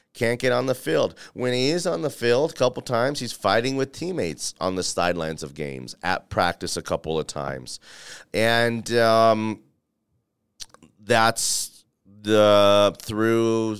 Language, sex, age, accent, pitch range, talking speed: English, male, 30-49, American, 90-120 Hz, 150 wpm